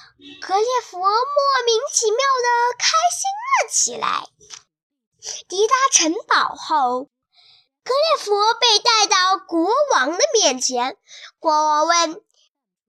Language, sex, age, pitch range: Chinese, male, 10-29, 300-435 Hz